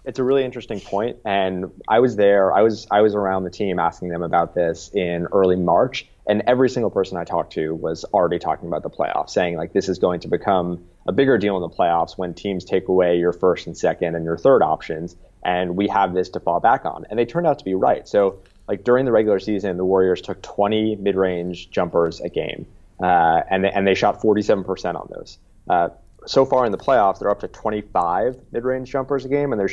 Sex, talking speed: male, 230 wpm